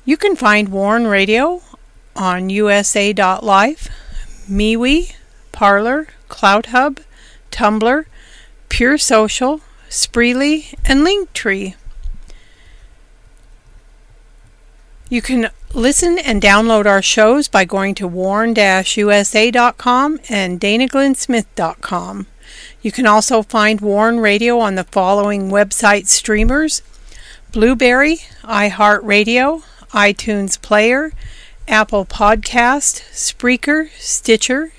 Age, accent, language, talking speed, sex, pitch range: 50-69, American, English, 85 wpm, female, 205-260 Hz